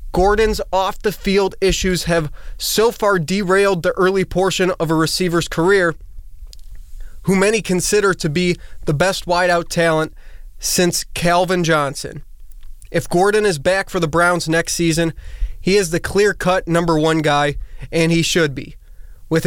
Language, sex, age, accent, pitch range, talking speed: English, male, 20-39, American, 155-185 Hz, 145 wpm